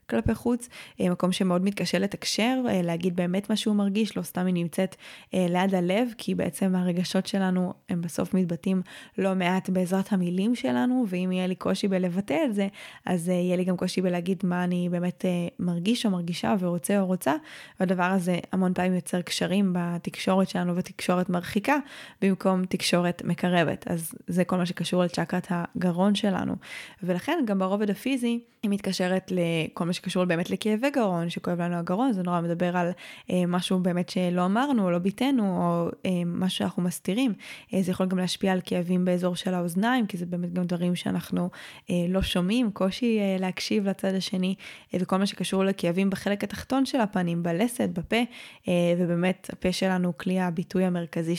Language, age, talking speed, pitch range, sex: Hebrew, 20-39, 170 wpm, 180-200 Hz, female